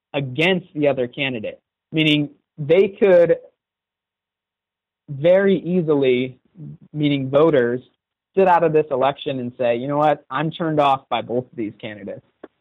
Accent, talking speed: American, 140 wpm